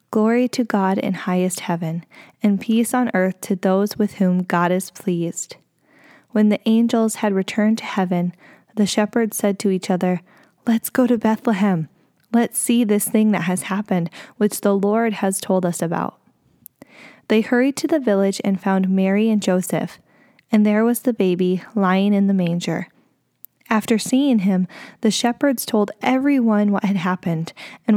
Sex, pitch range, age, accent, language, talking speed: female, 190-230 Hz, 10-29, American, English, 165 wpm